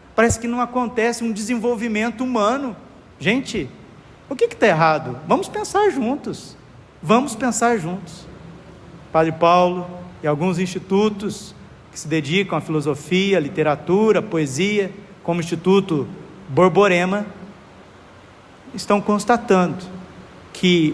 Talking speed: 110 wpm